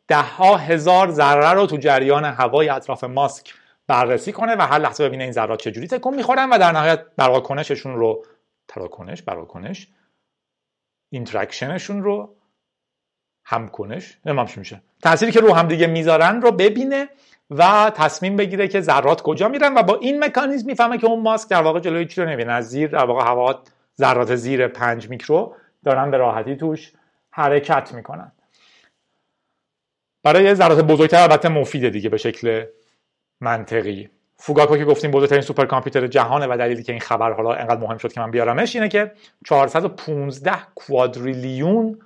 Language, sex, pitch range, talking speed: Persian, male, 125-185 Hz, 155 wpm